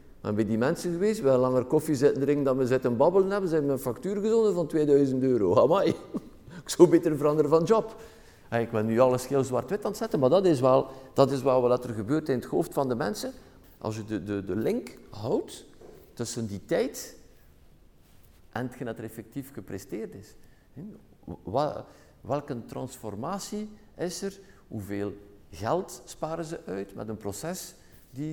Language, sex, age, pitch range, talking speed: Dutch, male, 50-69, 105-155 Hz, 185 wpm